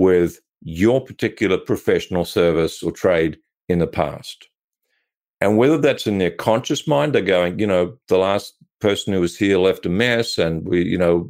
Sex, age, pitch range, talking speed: male, 50-69, 90-115 Hz, 180 wpm